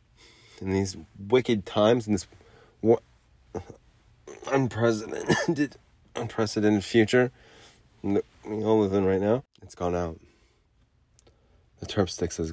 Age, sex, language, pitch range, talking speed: 30-49, male, English, 90-115 Hz, 115 wpm